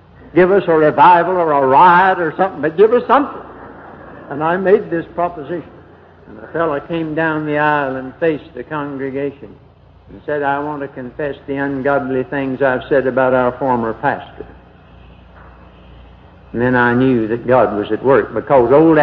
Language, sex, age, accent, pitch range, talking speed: English, male, 60-79, American, 120-145 Hz, 175 wpm